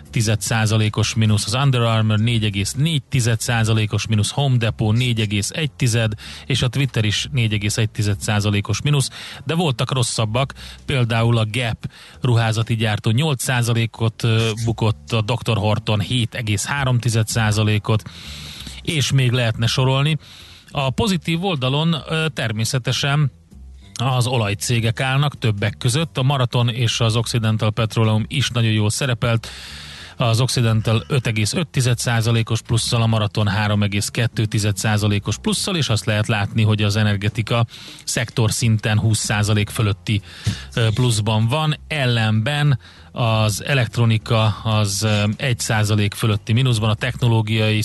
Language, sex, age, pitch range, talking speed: Hungarian, male, 30-49, 110-125 Hz, 110 wpm